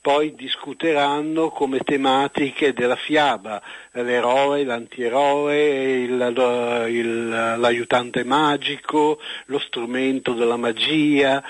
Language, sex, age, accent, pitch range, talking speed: Italian, male, 60-79, native, 120-145 Hz, 85 wpm